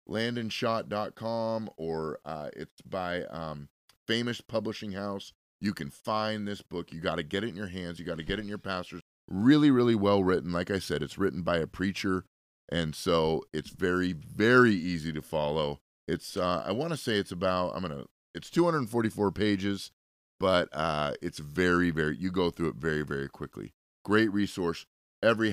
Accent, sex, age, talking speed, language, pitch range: American, male, 30-49, 185 wpm, English, 85-110 Hz